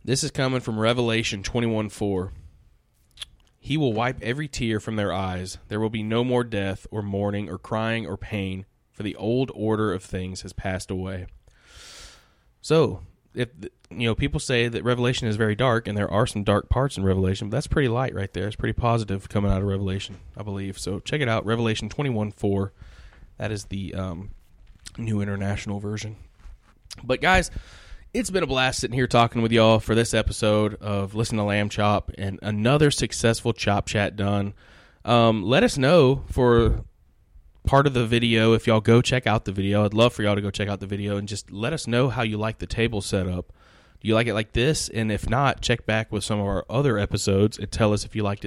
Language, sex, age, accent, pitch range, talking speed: English, male, 20-39, American, 100-120 Hz, 205 wpm